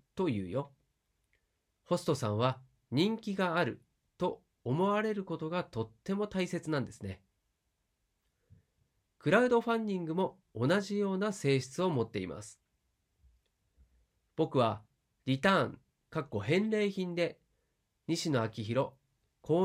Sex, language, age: male, Japanese, 40-59